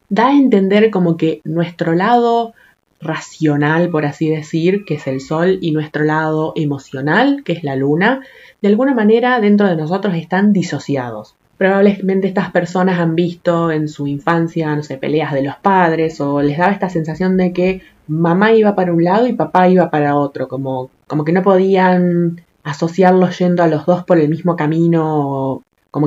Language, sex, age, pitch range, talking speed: Spanish, female, 20-39, 150-190 Hz, 180 wpm